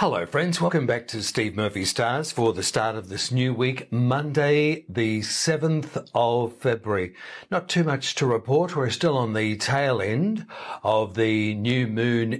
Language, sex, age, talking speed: English, male, 60-79, 170 wpm